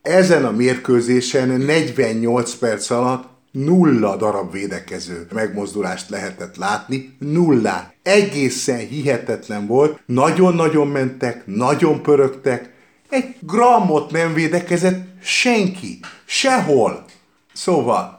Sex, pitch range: male, 120-160 Hz